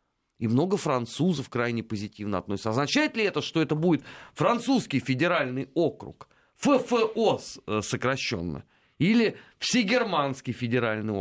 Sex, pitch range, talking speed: male, 105-155 Hz, 105 wpm